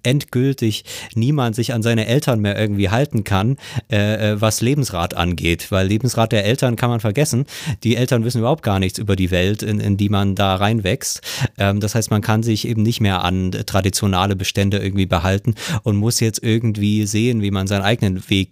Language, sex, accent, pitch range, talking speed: German, male, German, 100-125 Hz, 195 wpm